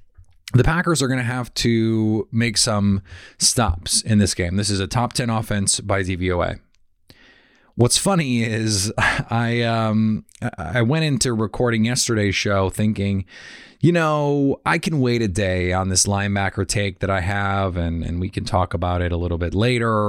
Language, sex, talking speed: English, male, 175 wpm